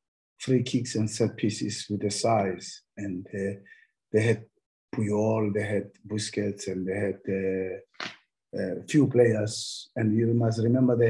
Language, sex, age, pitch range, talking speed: English, male, 50-69, 105-135 Hz, 155 wpm